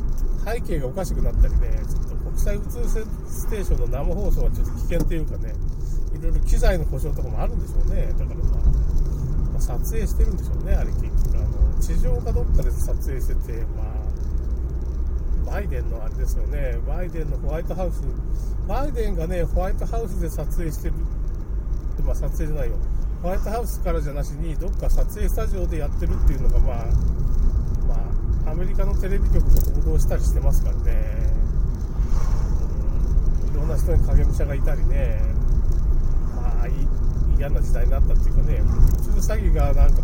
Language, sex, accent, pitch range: Japanese, male, native, 65-80 Hz